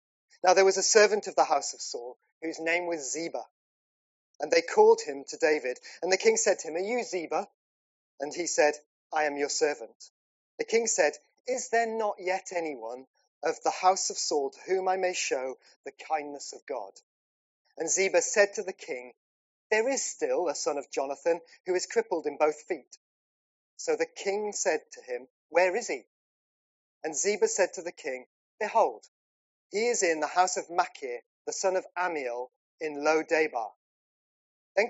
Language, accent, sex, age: English, British, male, 30-49